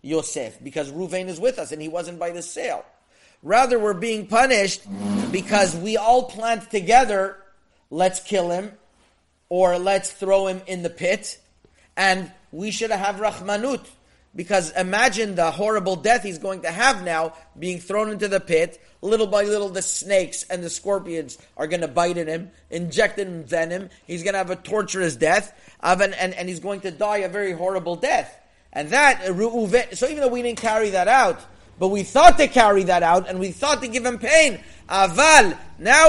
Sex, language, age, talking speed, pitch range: male, English, 30-49, 185 wpm, 165-205 Hz